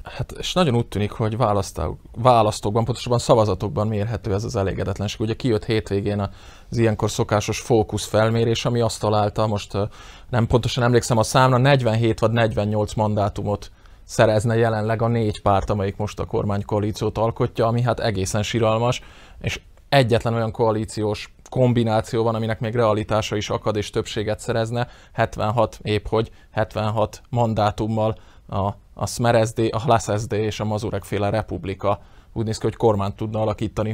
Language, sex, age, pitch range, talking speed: Hungarian, male, 20-39, 105-115 Hz, 145 wpm